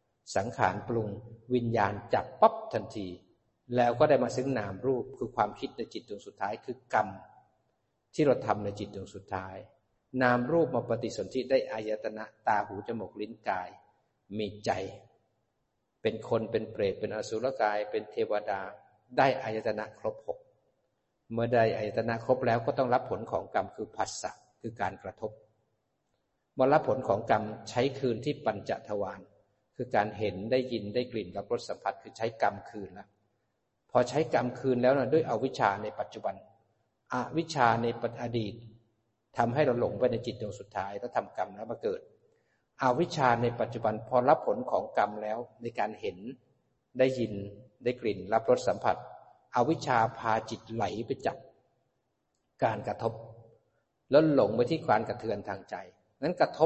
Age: 60-79